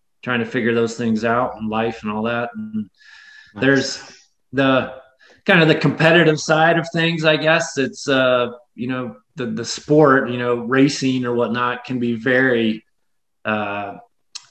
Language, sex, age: English, male, 20-39